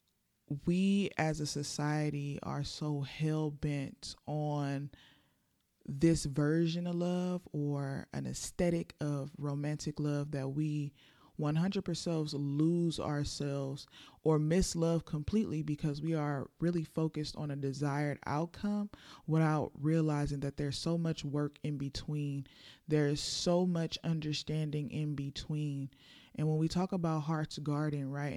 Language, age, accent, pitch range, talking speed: English, 20-39, American, 145-160 Hz, 125 wpm